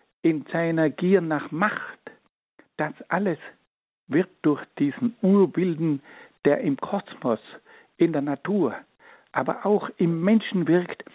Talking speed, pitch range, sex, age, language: 120 wpm, 130-190 Hz, male, 60-79, German